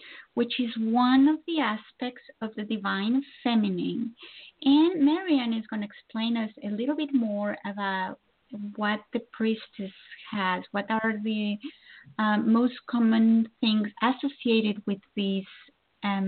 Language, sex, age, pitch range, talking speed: English, female, 30-49, 205-250 Hz, 135 wpm